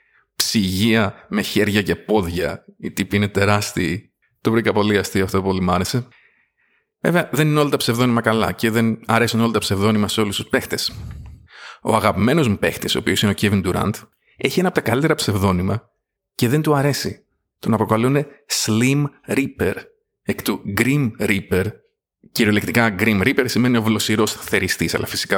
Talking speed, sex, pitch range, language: 170 wpm, male, 105-140 Hz, Greek